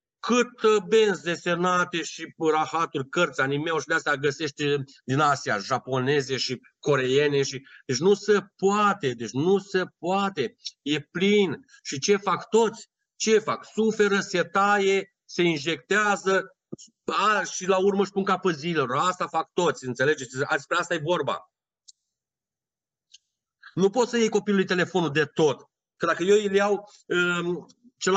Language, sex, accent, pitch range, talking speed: Romanian, male, native, 150-195 Hz, 140 wpm